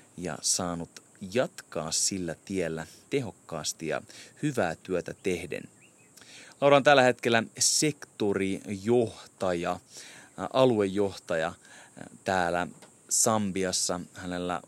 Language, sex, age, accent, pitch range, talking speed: Finnish, male, 30-49, native, 90-110 Hz, 80 wpm